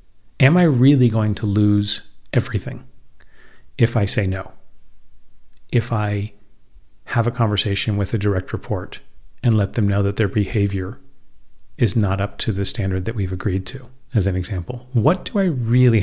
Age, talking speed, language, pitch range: 40-59, 165 wpm, English, 105-130 Hz